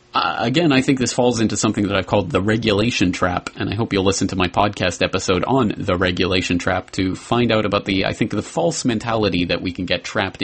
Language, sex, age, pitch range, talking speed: English, male, 30-49, 95-125 Hz, 235 wpm